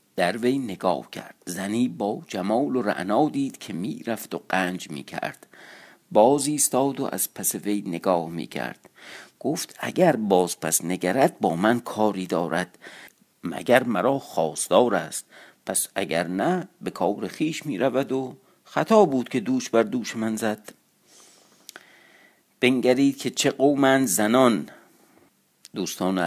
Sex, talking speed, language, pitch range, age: male, 130 wpm, Persian, 95-130 Hz, 50-69